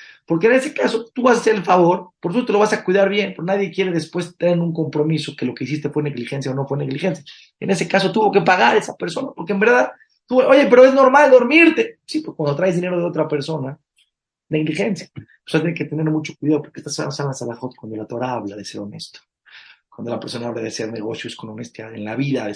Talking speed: 250 wpm